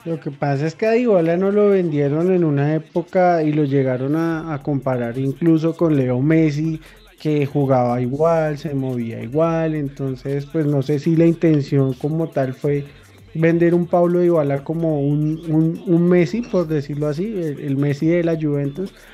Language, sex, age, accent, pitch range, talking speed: Spanish, male, 20-39, Colombian, 140-165 Hz, 175 wpm